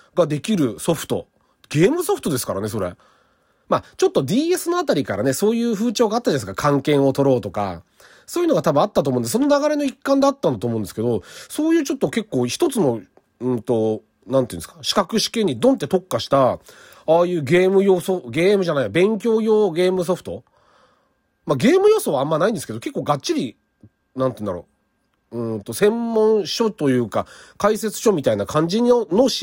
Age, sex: 40-59, male